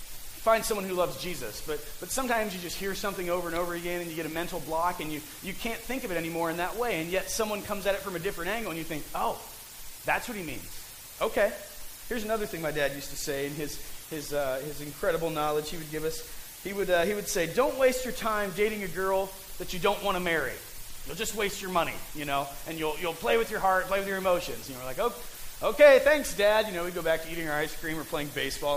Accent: American